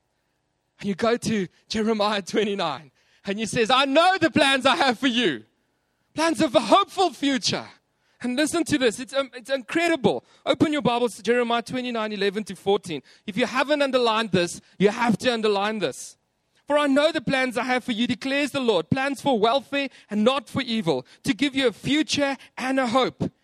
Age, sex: 30-49, male